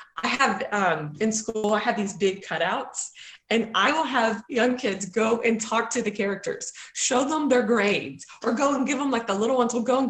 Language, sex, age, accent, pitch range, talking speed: English, female, 30-49, American, 210-275 Hz, 225 wpm